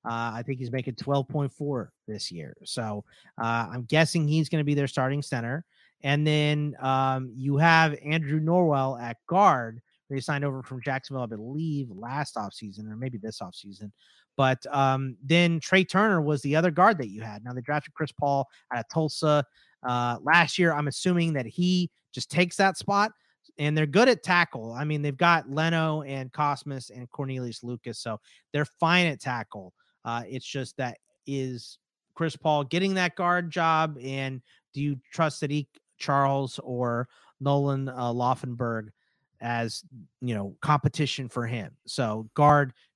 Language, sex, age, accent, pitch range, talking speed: English, male, 30-49, American, 125-155 Hz, 170 wpm